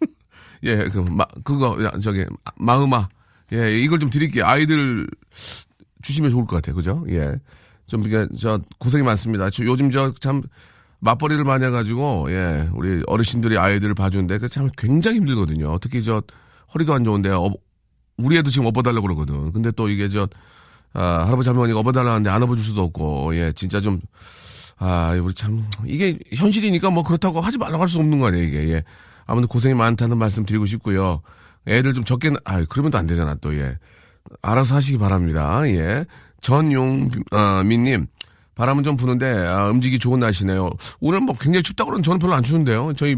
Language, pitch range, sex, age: Korean, 95-130 Hz, male, 40-59